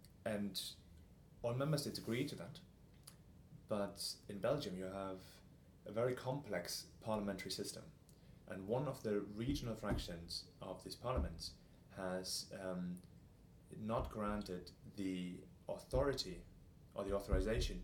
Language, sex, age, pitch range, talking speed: English, male, 30-49, 90-105 Hz, 120 wpm